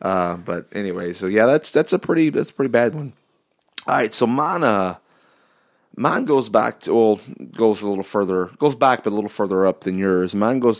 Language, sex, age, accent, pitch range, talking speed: English, male, 30-49, American, 90-110 Hz, 220 wpm